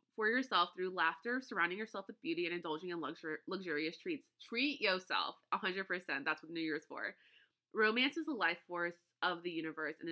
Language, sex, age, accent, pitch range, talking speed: English, female, 20-39, American, 170-245 Hz, 190 wpm